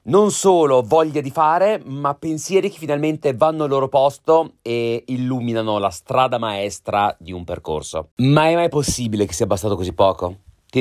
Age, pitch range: 30-49, 120-205 Hz